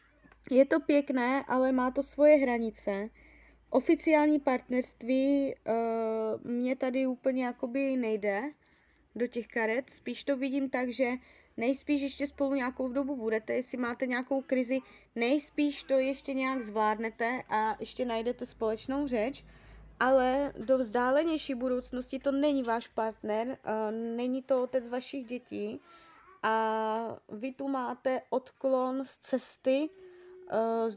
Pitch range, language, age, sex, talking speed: 230-265 Hz, Czech, 20-39, female, 120 wpm